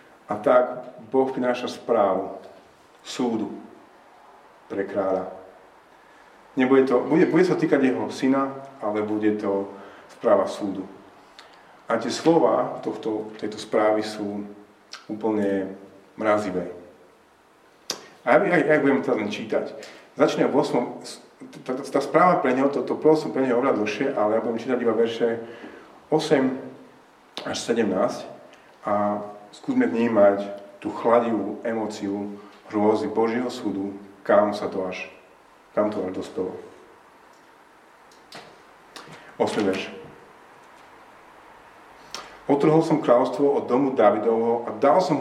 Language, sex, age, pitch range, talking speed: Slovak, male, 40-59, 100-125 Hz, 115 wpm